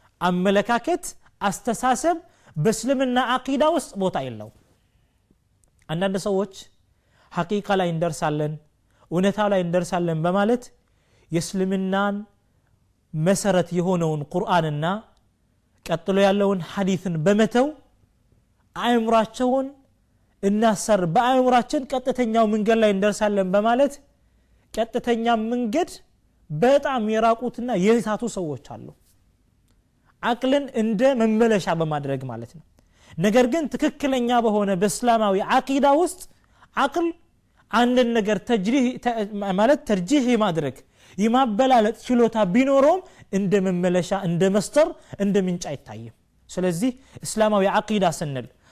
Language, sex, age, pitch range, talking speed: Amharic, male, 30-49, 170-245 Hz, 80 wpm